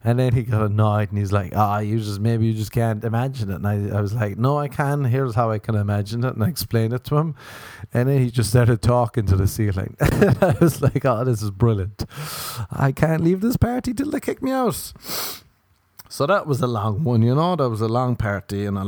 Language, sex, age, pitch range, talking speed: English, male, 30-49, 100-120 Hz, 250 wpm